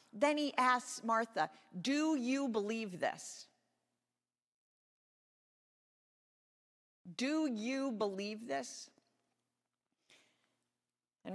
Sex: female